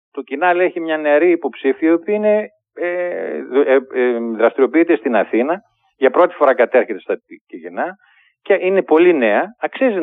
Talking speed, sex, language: 155 wpm, male, Greek